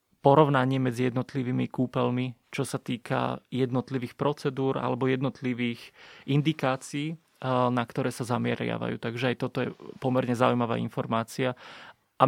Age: 30-49